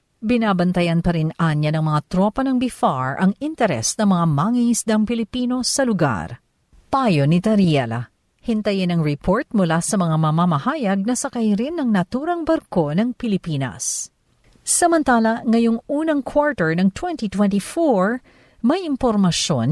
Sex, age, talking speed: female, 50-69, 130 wpm